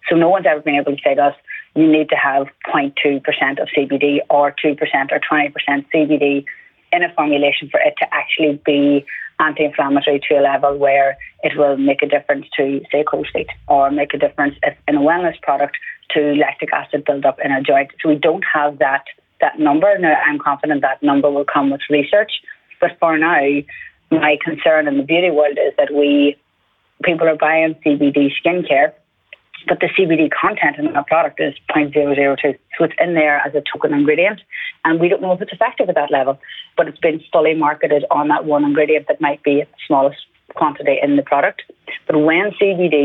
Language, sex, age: English, female, 30-49